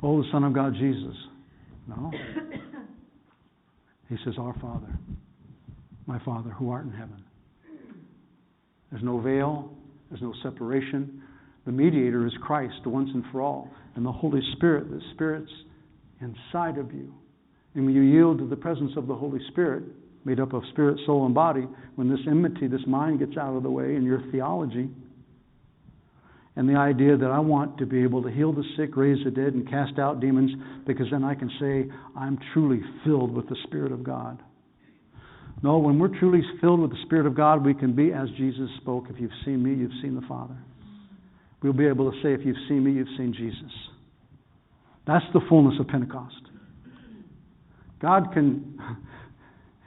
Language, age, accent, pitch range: English, 60-79, American, 130-150 Hz